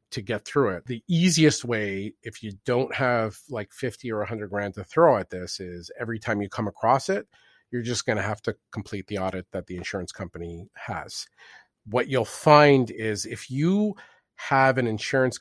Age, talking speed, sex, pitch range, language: 40-59, 195 wpm, male, 100-130 Hz, English